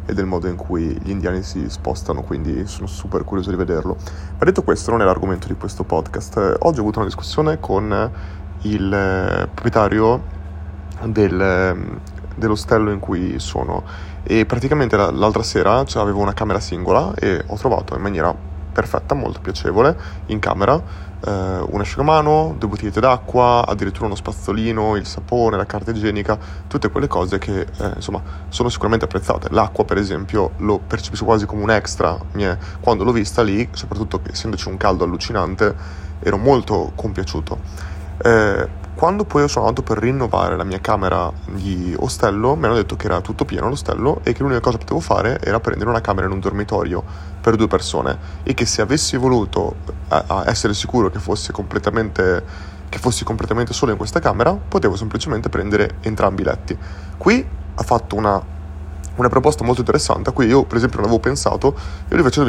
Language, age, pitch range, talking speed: Italian, 30-49, 85-110 Hz, 170 wpm